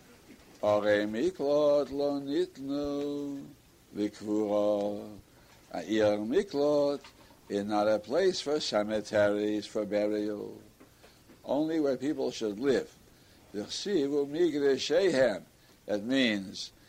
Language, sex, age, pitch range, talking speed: English, male, 60-79, 105-145 Hz, 70 wpm